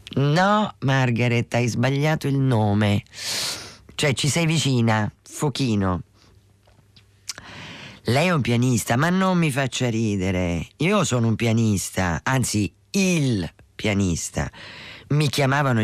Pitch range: 100-150 Hz